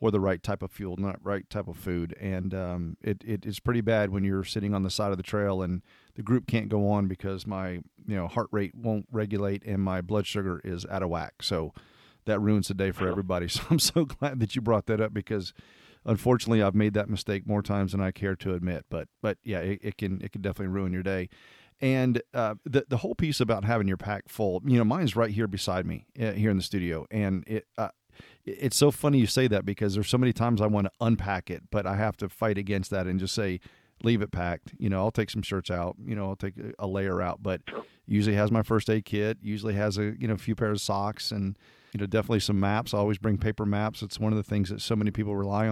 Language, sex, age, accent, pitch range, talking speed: English, male, 40-59, American, 95-110 Hz, 260 wpm